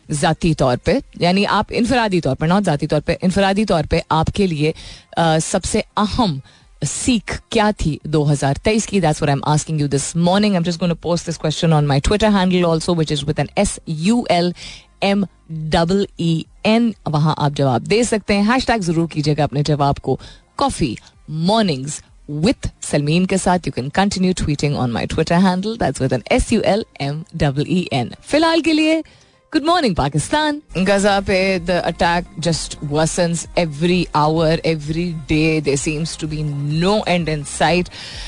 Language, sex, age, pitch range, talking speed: Hindi, female, 30-49, 150-200 Hz, 135 wpm